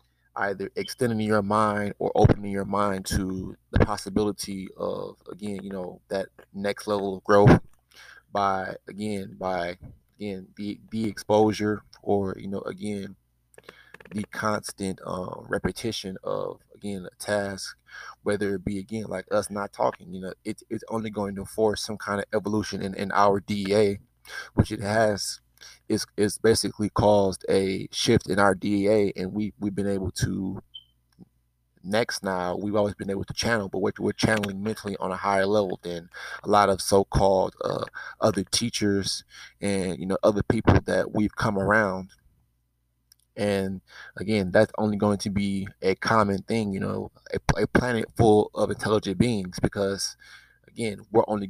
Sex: male